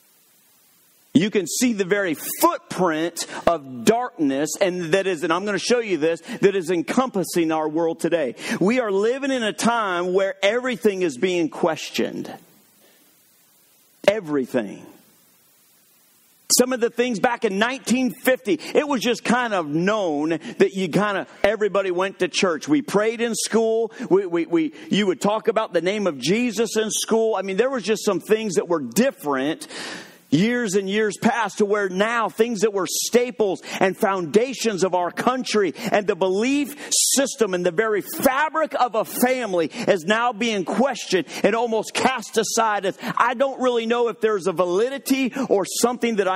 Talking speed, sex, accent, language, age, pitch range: 170 wpm, male, American, English, 50-69, 185-245 Hz